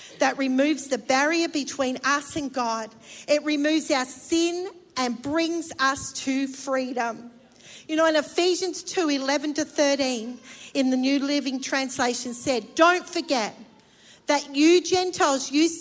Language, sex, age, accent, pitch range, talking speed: English, female, 40-59, Australian, 260-325 Hz, 140 wpm